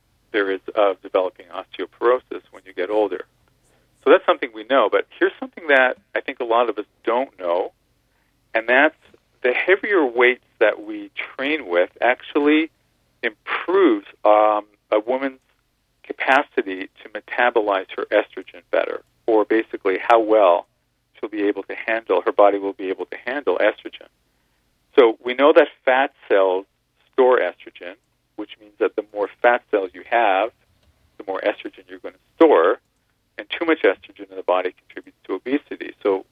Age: 50-69